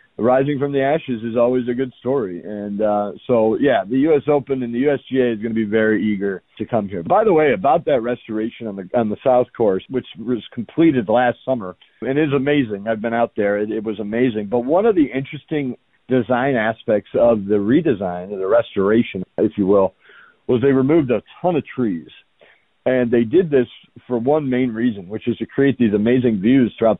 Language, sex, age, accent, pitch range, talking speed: English, male, 50-69, American, 105-130 Hz, 215 wpm